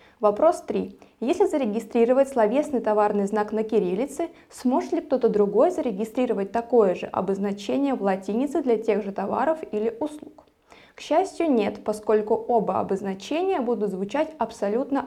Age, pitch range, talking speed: 20-39, 215-300 Hz, 135 wpm